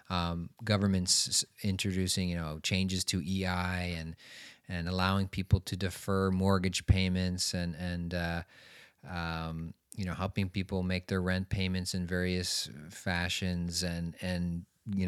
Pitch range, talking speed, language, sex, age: 90-100 Hz, 135 wpm, English, male, 30-49